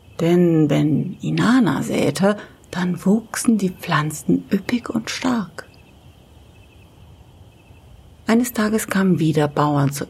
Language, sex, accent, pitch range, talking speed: German, female, German, 135-195 Hz, 100 wpm